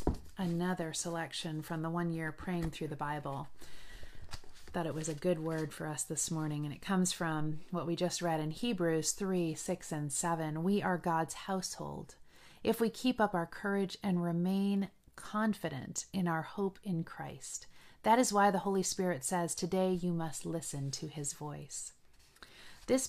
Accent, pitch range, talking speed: American, 165-195 Hz, 175 wpm